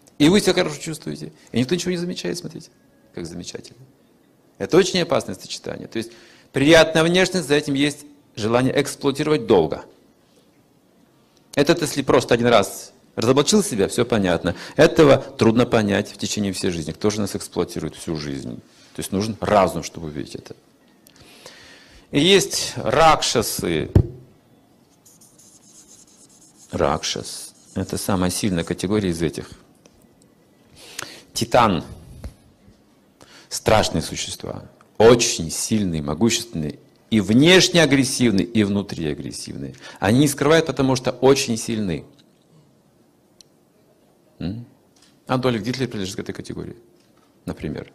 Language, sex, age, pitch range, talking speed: Russian, male, 40-59, 95-145 Hz, 115 wpm